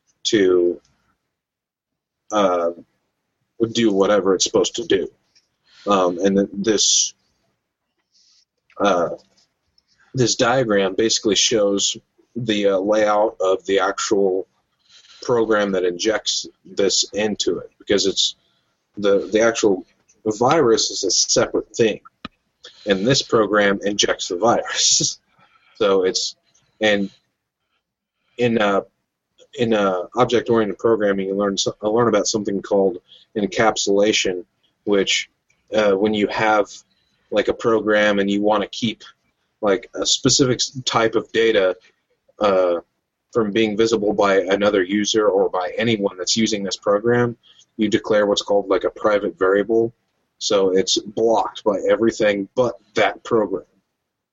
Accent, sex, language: American, male, English